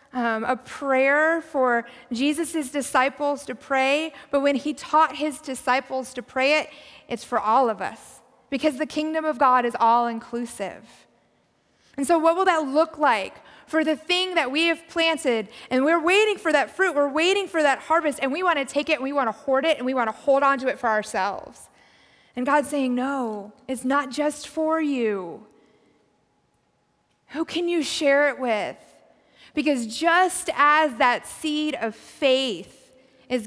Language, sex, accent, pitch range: English, female, American, 245-300 Hz